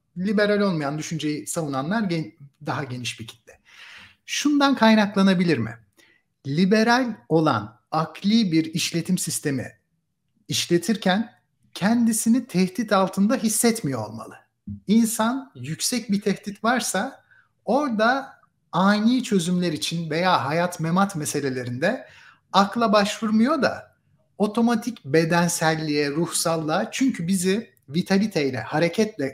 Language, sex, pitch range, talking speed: Turkish, male, 145-205 Hz, 95 wpm